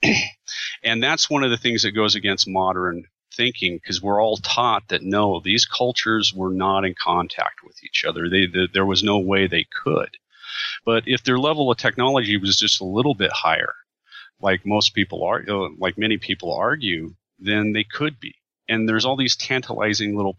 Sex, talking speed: male, 190 wpm